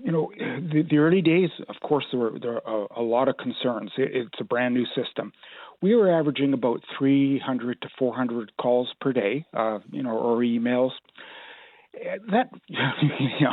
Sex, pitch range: male, 130-155 Hz